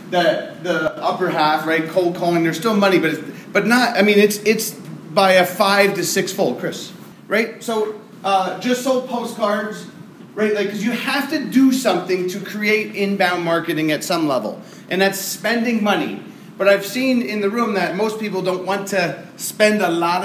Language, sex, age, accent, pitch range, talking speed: English, male, 30-49, American, 185-220 Hz, 190 wpm